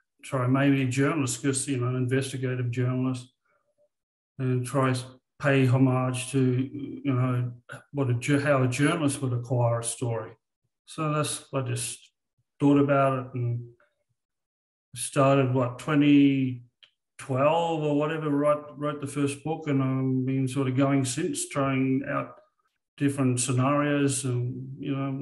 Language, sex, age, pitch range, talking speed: English, male, 40-59, 125-140 Hz, 140 wpm